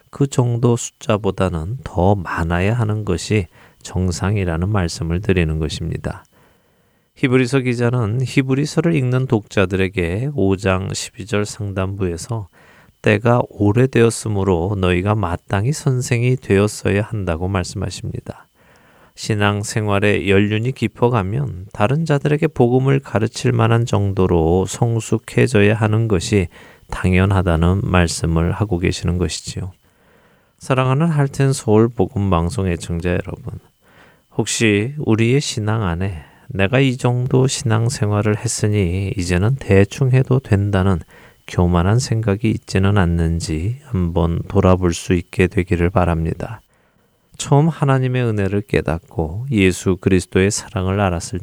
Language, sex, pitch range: Korean, male, 90-120 Hz